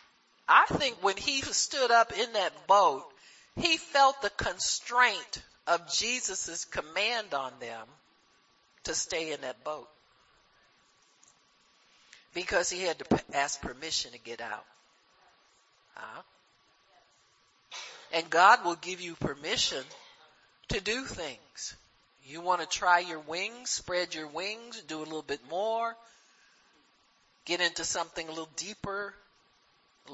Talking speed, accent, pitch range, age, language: 125 wpm, American, 160-230 Hz, 50-69, English